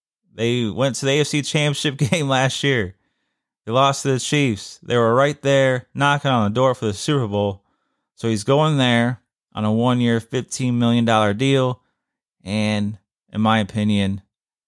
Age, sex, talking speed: 20-39, male, 165 wpm